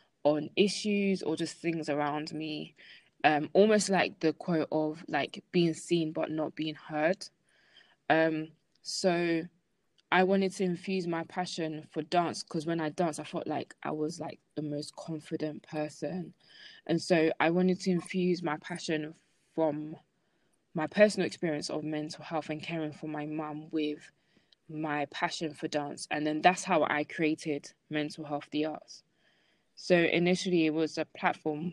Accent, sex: British, female